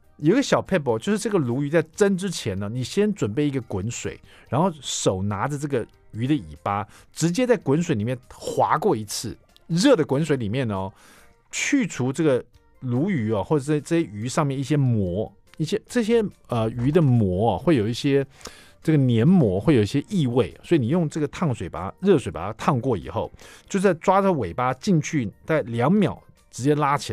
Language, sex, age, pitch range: Chinese, male, 50-69, 110-160 Hz